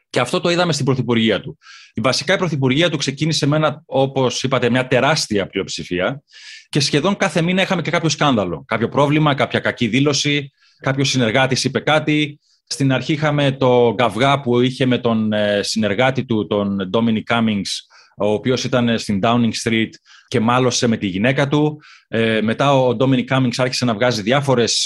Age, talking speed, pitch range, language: 30-49, 175 wpm, 110-145 Hz, Greek